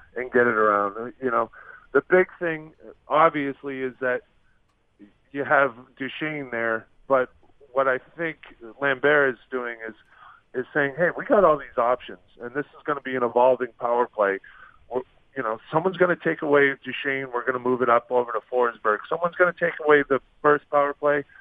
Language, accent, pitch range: English, American, 120-145 Hz